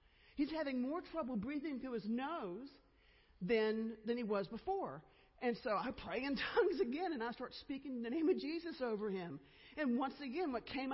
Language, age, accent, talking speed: English, 50-69, American, 190 wpm